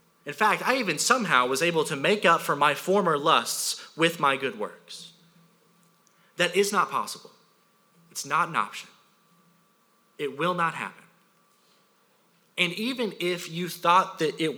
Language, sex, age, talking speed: English, male, 30-49, 150 wpm